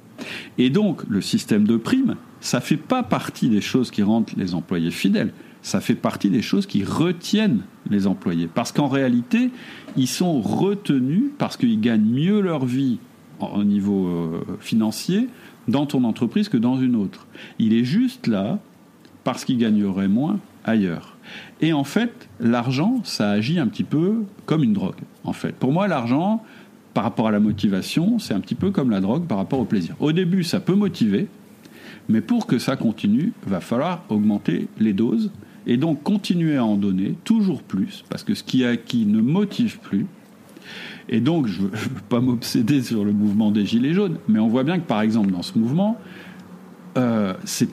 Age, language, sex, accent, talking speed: 50-69, French, male, French, 185 wpm